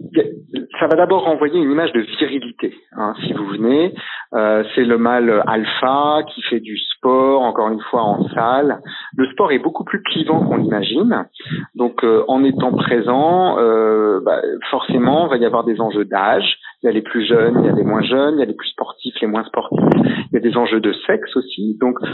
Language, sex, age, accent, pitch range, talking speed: French, male, 50-69, French, 115-170 Hz, 215 wpm